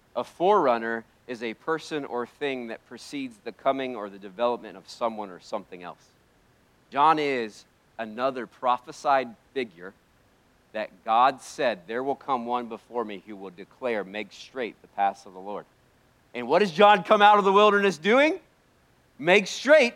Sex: male